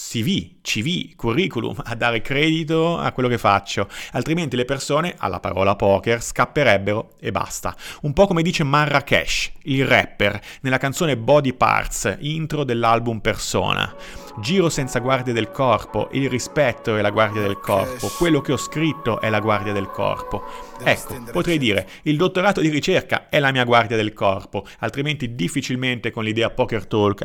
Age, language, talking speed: 30-49, Italian, 160 wpm